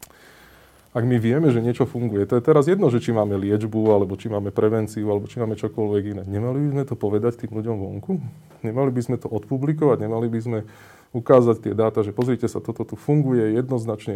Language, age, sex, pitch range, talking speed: Slovak, 20-39, male, 110-130 Hz, 210 wpm